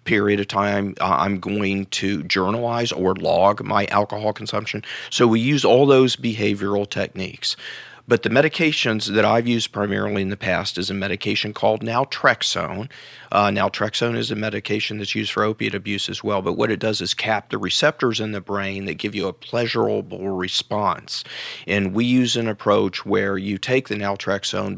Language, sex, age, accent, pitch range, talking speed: English, male, 40-59, American, 100-115 Hz, 180 wpm